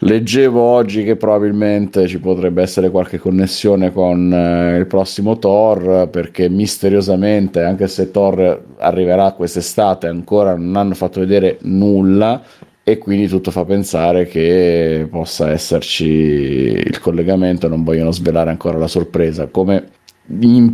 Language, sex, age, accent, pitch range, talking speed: Italian, male, 30-49, native, 85-105 Hz, 125 wpm